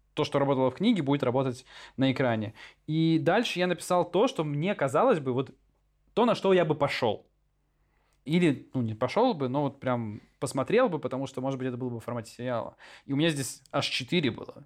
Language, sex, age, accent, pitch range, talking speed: Russian, male, 20-39, native, 130-170 Hz, 215 wpm